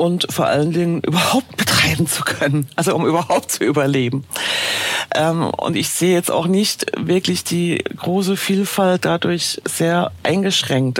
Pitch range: 135-175 Hz